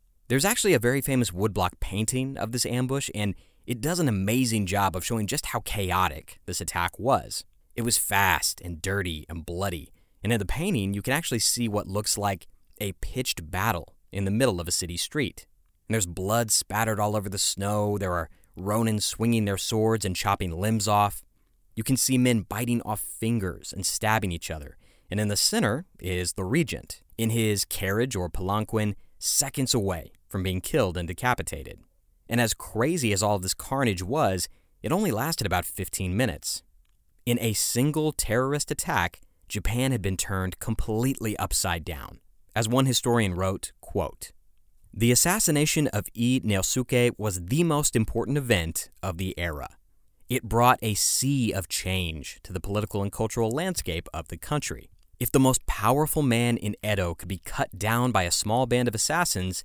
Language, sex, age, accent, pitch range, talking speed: English, male, 30-49, American, 90-120 Hz, 175 wpm